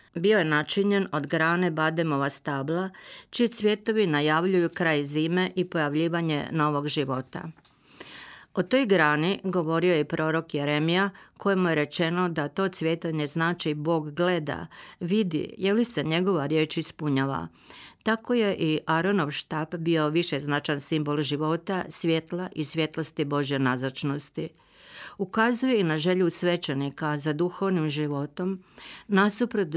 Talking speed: 130 wpm